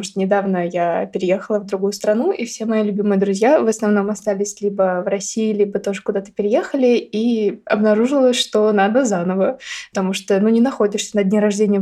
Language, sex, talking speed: Russian, female, 185 wpm